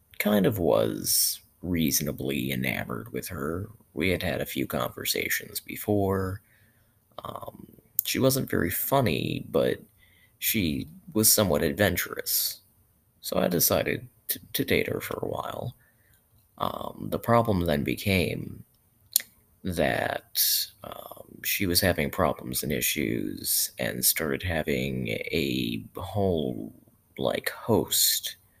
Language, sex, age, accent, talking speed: English, male, 30-49, American, 115 wpm